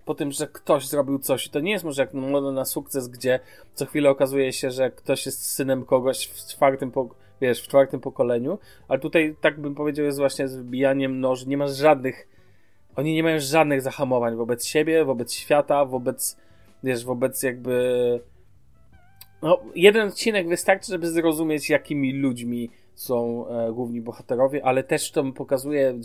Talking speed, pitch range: 165 wpm, 120-145 Hz